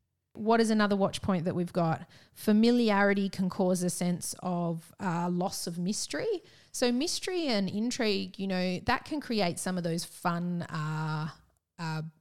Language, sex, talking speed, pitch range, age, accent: English, female, 160 wpm, 165-200 Hz, 30-49, Australian